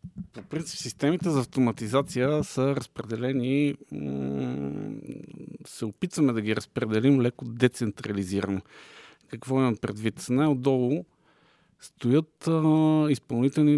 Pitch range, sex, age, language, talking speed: 115-140 Hz, male, 50-69, Bulgarian, 85 wpm